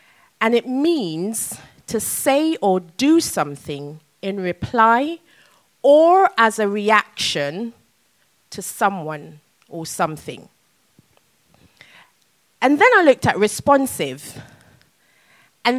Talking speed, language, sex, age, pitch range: 95 wpm, English, female, 20-39, 175-290 Hz